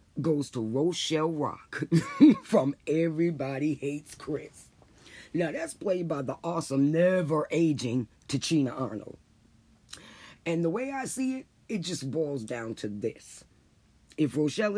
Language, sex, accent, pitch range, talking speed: English, female, American, 115-160 Hz, 125 wpm